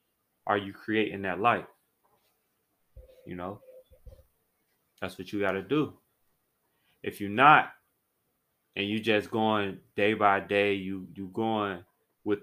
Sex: male